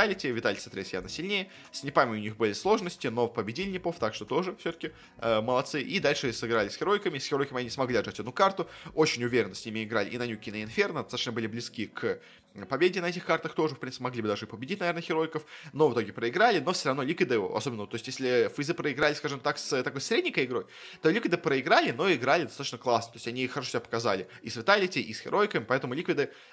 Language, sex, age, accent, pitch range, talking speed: Russian, male, 20-39, native, 115-150 Hz, 225 wpm